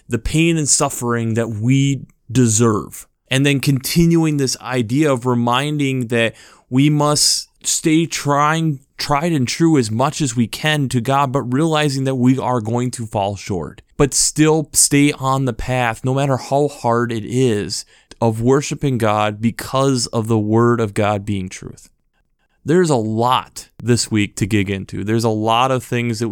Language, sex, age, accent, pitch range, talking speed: English, male, 20-39, American, 115-145 Hz, 170 wpm